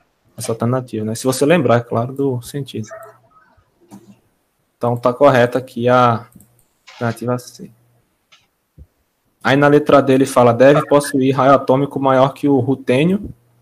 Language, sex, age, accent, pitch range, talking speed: Portuguese, male, 20-39, Brazilian, 120-135 Hz, 130 wpm